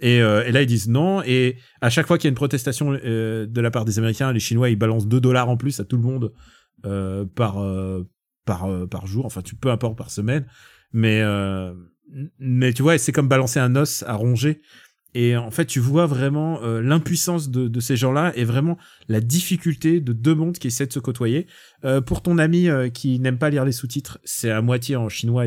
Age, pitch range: 30-49, 115-145 Hz